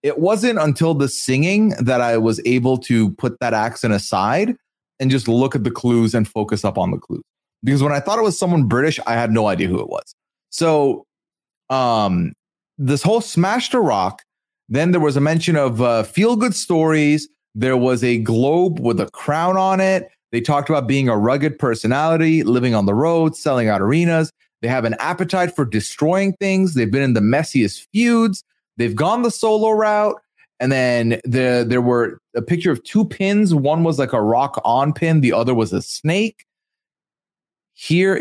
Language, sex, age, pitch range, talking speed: English, male, 30-49, 120-180 Hz, 190 wpm